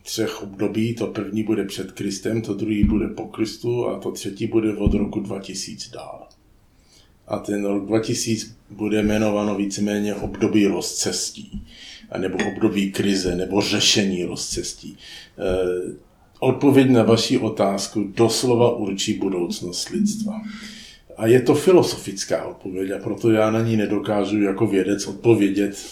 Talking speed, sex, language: 130 wpm, male, Czech